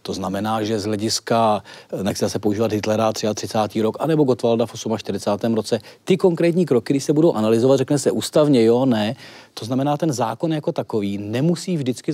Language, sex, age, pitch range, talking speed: Czech, male, 40-59, 110-135 Hz, 185 wpm